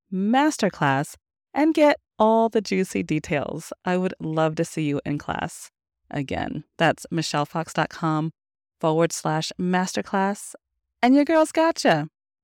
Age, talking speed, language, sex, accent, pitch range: 30-49, 120 wpm, English, female, American, 160-215 Hz